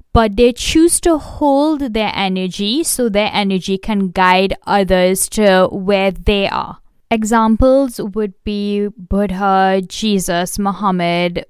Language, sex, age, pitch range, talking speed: English, female, 10-29, 190-235 Hz, 120 wpm